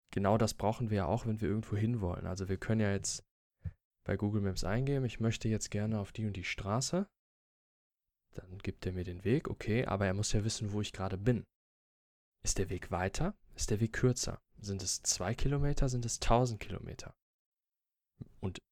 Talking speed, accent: 200 wpm, German